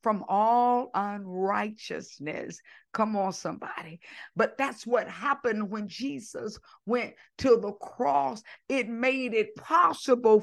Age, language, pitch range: 50-69, English, 195-265 Hz